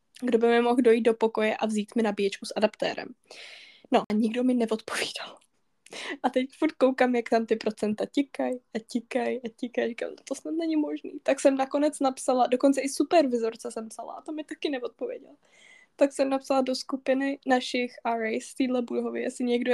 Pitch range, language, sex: 220-270 Hz, Czech, female